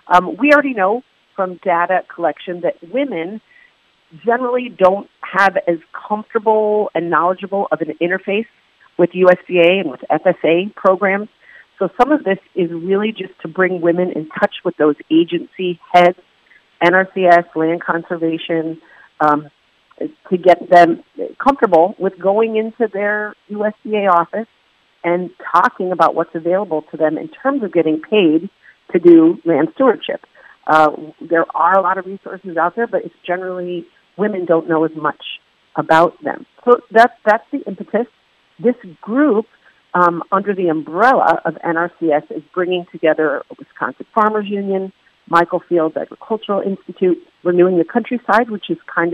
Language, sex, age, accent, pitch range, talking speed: English, female, 40-59, American, 170-210 Hz, 145 wpm